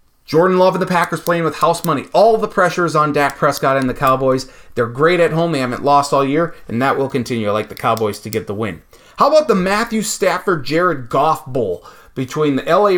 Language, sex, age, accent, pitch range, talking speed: English, male, 30-49, American, 145-195 Hz, 230 wpm